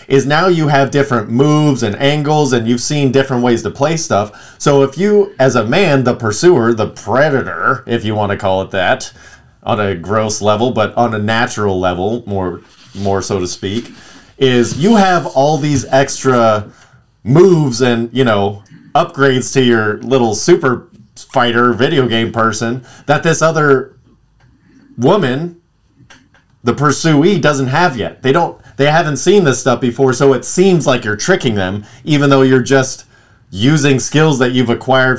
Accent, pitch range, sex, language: American, 115-140 Hz, male, English